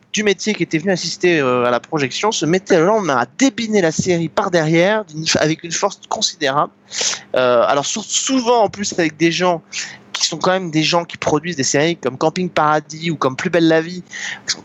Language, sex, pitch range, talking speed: French, male, 150-195 Hz, 215 wpm